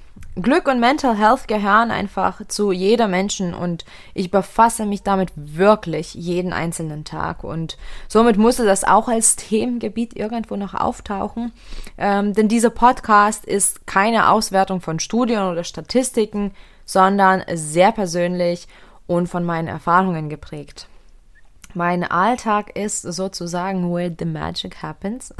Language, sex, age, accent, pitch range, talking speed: German, female, 20-39, German, 175-220 Hz, 130 wpm